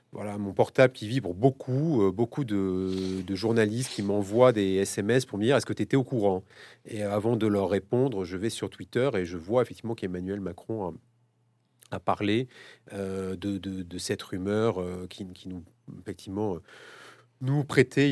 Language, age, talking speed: French, 30-49, 185 wpm